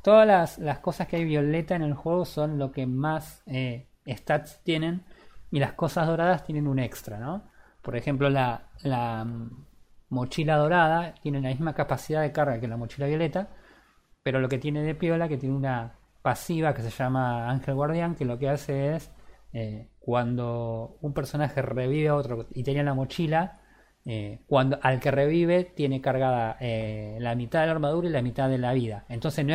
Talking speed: 190 wpm